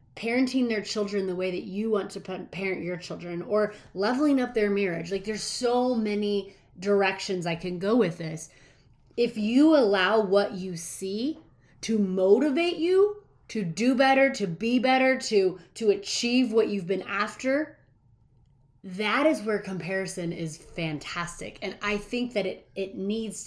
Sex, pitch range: female, 170-220 Hz